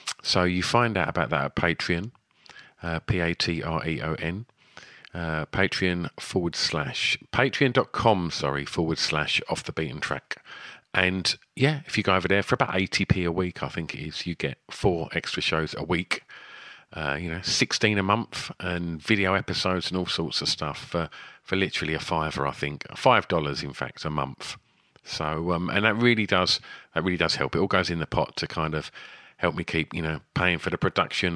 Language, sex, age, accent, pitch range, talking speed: English, male, 40-59, British, 80-95 Hz, 190 wpm